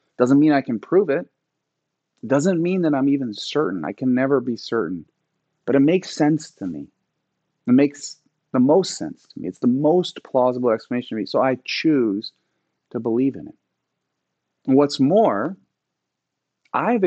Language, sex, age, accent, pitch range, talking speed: English, male, 40-59, American, 115-145 Hz, 170 wpm